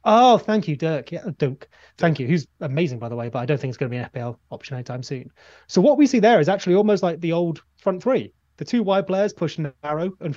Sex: male